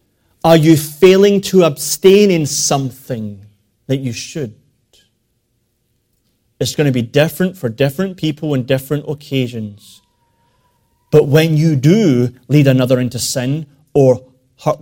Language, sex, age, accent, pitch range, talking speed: English, male, 30-49, British, 120-160 Hz, 125 wpm